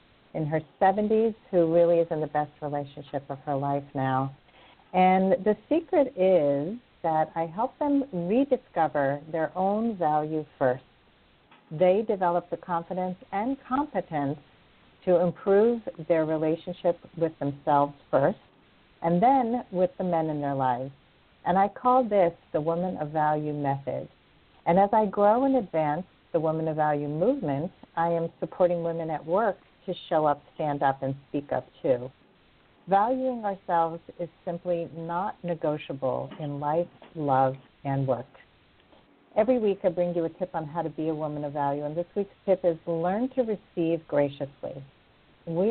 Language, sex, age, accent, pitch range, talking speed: English, female, 50-69, American, 145-185 Hz, 155 wpm